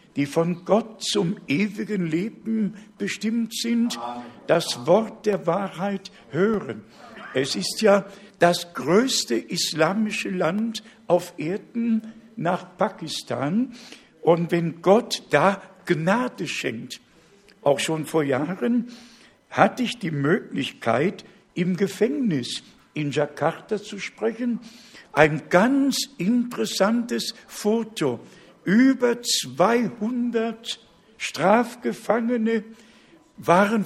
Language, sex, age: German, male, 60-79